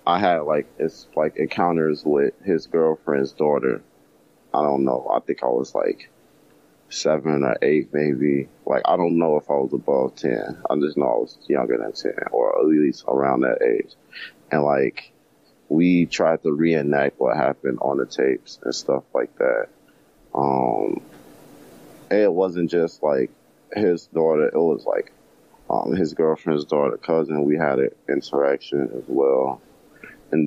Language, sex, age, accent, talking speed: English, male, 30-49, American, 160 wpm